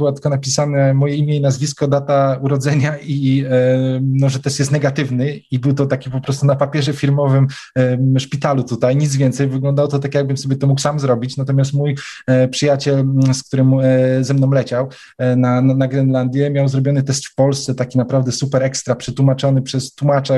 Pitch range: 130-140 Hz